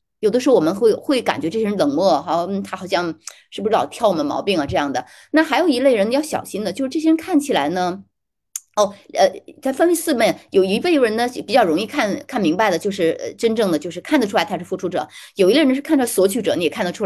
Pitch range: 190-300 Hz